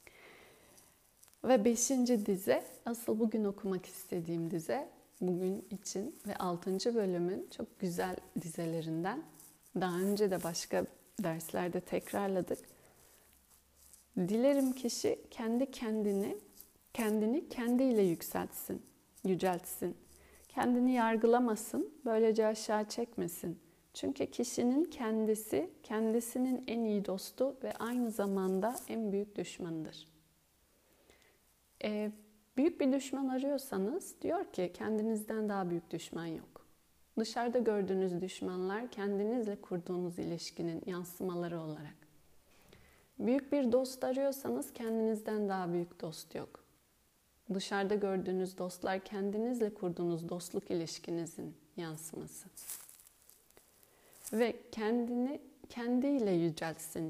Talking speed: 95 wpm